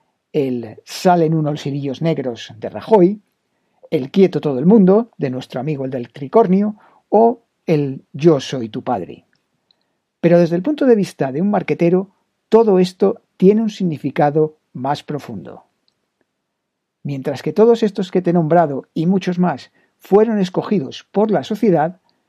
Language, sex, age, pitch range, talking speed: Spanish, male, 50-69, 145-200 Hz, 150 wpm